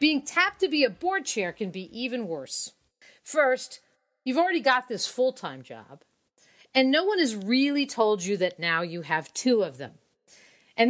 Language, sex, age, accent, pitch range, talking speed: English, female, 40-59, American, 190-260 Hz, 180 wpm